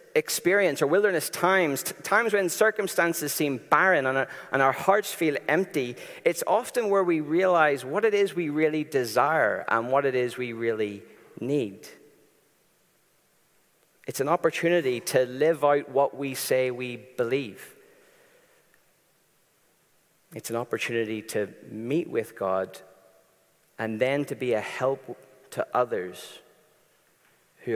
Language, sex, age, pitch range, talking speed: English, male, 40-59, 125-185 Hz, 130 wpm